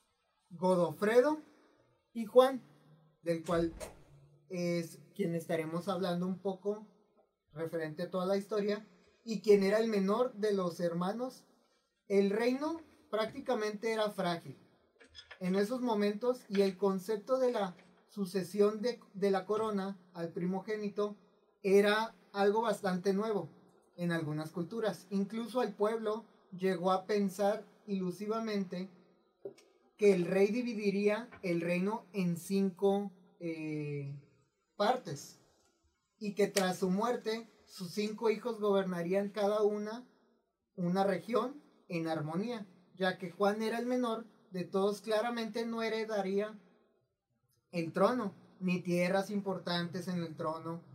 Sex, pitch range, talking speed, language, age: male, 185-215 Hz, 120 wpm, Spanish, 30-49